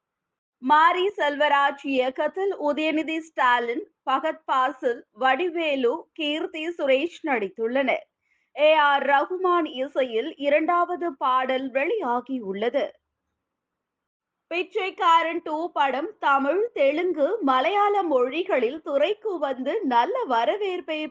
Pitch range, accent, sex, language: 265-340 Hz, native, female, Tamil